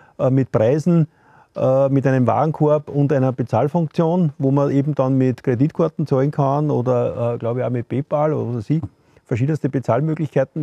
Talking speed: 145 wpm